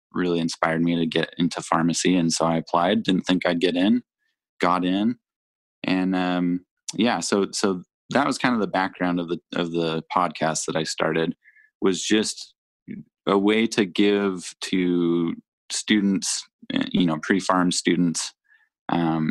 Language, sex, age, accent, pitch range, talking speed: English, male, 20-39, American, 85-95 Hz, 155 wpm